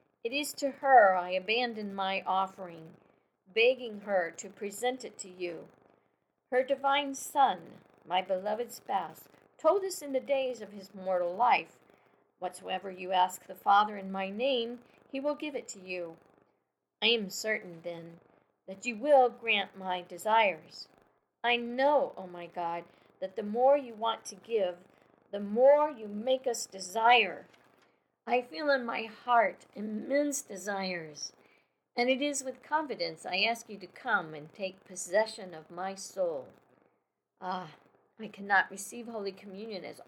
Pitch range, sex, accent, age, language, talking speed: 190-255 Hz, female, American, 50-69, English, 155 wpm